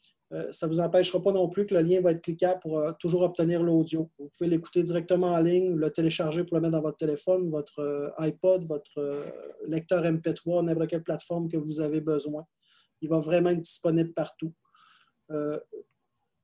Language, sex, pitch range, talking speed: French, male, 160-185 Hz, 185 wpm